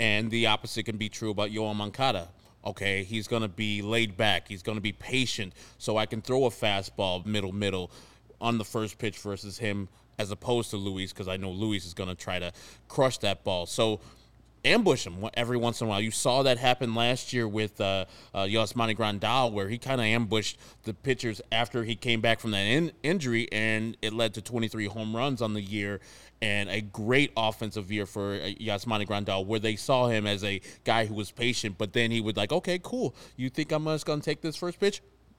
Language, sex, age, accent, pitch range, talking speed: English, male, 20-39, American, 105-125 Hz, 220 wpm